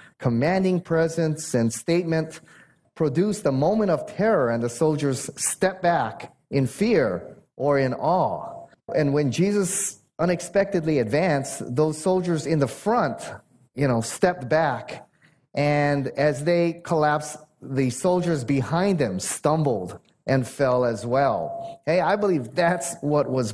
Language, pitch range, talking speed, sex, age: English, 125-175 Hz, 135 wpm, male, 30-49